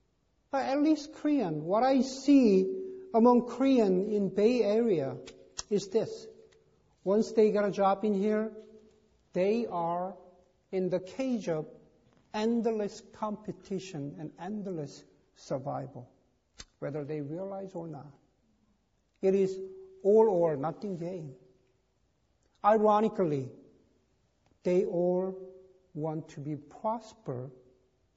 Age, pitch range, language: 60-79, 190-250 Hz, Korean